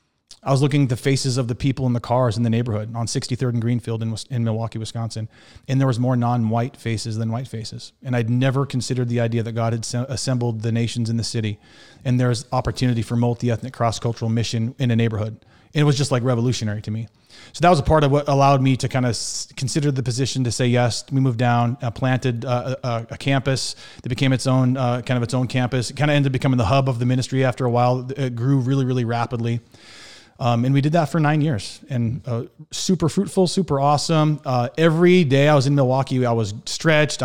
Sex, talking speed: male, 235 wpm